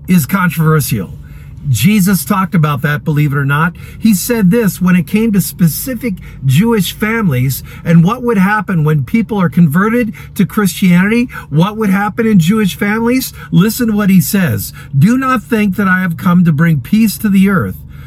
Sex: male